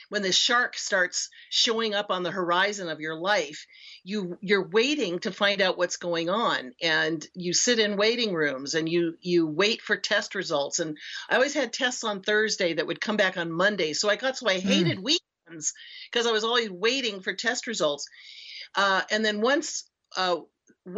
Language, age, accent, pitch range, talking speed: English, 50-69, American, 175-230 Hz, 190 wpm